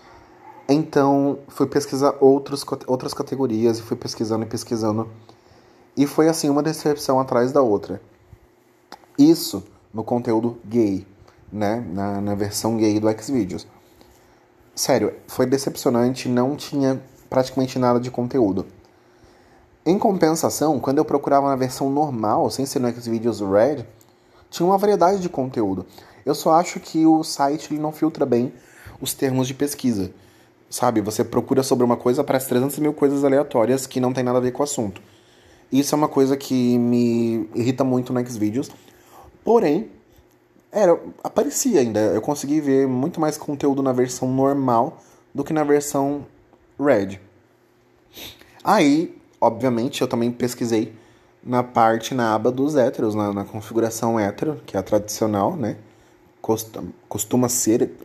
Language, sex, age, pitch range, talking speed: Portuguese, male, 30-49, 115-140 Hz, 145 wpm